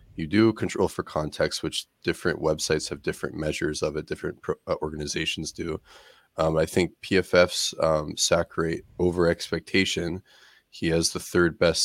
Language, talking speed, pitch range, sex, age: English, 150 wpm, 80-85 Hz, male, 20-39